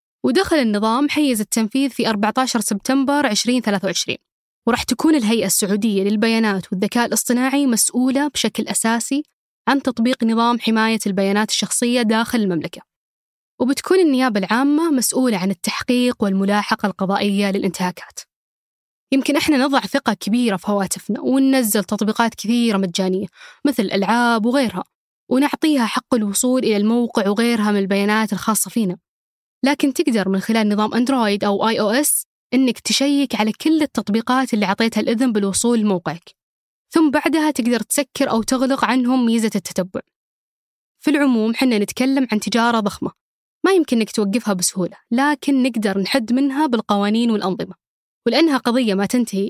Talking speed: 135 wpm